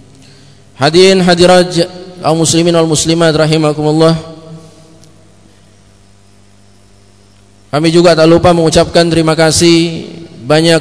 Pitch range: 150-165 Hz